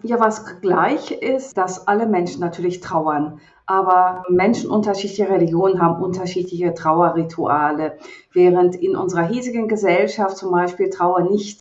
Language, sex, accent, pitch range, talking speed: German, female, German, 175-210 Hz, 130 wpm